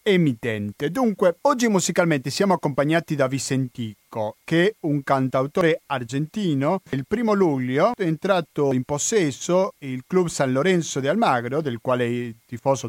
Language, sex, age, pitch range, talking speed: Italian, male, 40-59, 130-175 Hz, 140 wpm